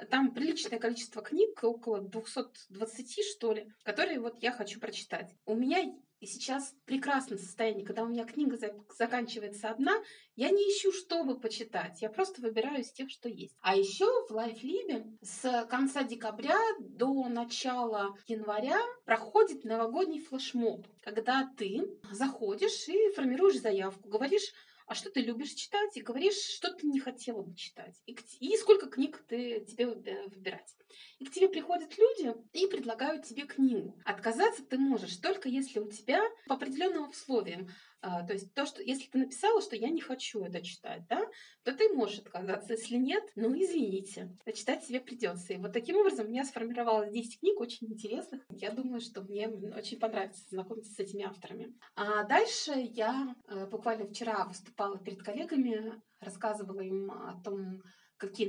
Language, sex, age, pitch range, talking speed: Russian, female, 30-49, 210-290 Hz, 160 wpm